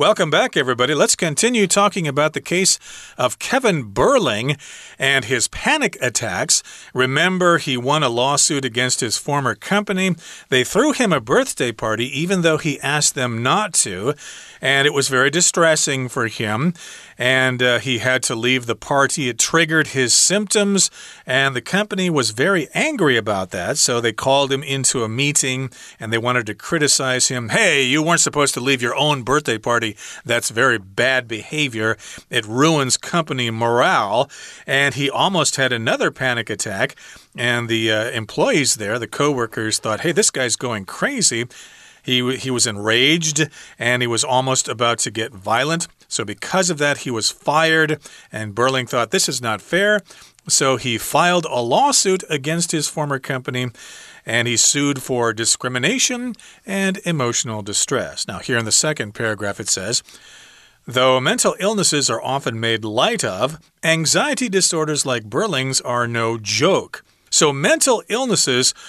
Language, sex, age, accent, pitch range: Chinese, male, 40-59, American, 120-160 Hz